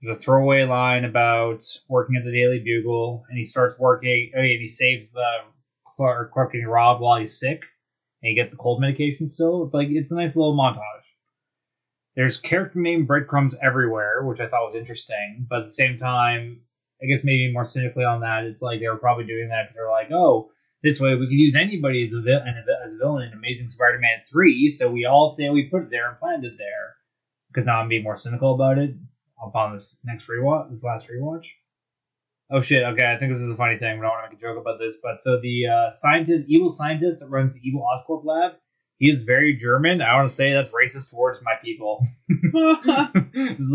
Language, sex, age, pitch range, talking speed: English, male, 20-39, 120-150 Hz, 225 wpm